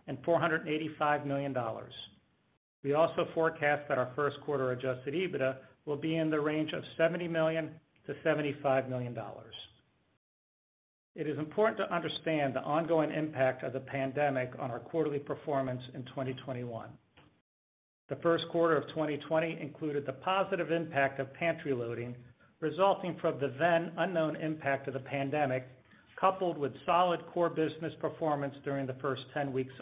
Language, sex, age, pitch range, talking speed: English, male, 50-69, 135-160 Hz, 145 wpm